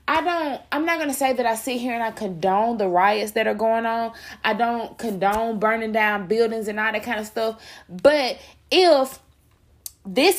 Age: 20-39